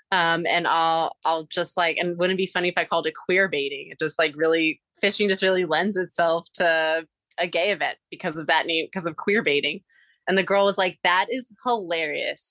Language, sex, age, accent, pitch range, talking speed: English, female, 20-39, American, 165-205 Hz, 220 wpm